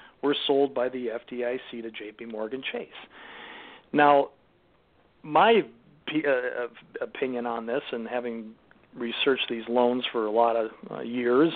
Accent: American